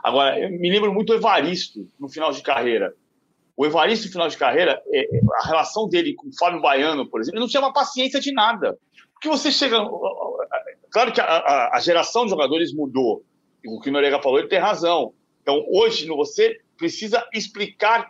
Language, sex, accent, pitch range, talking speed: Portuguese, male, Brazilian, 190-280 Hz, 200 wpm